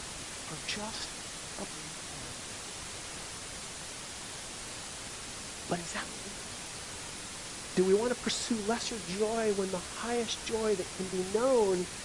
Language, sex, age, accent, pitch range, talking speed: English, male, 50-69, American, 170-245 Hz, 105 wpm